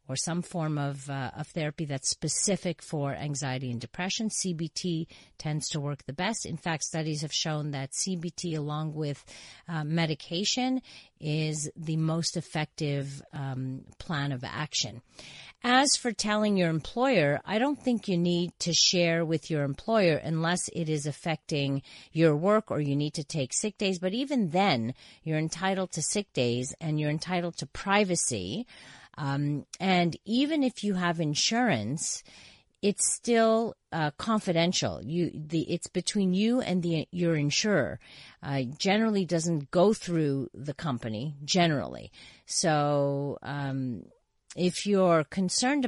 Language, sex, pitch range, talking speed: English, female, 145-185 Hz, 150 wpm